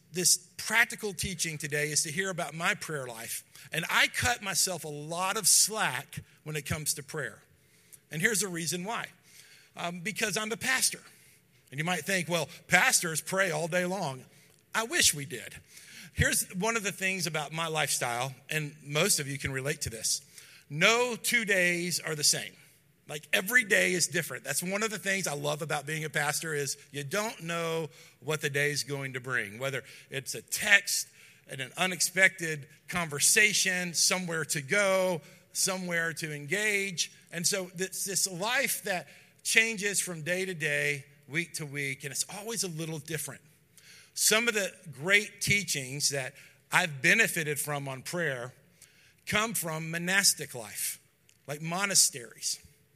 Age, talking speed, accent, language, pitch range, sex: 50-69, 170 wpm, American, English, 145-190 Hz, male